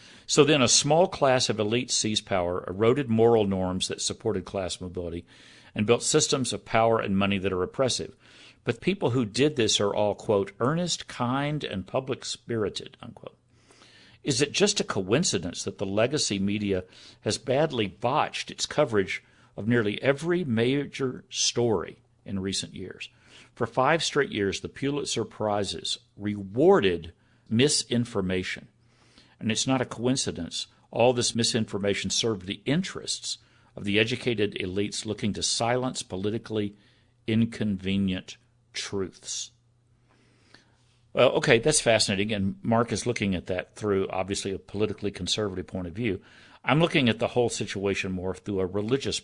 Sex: male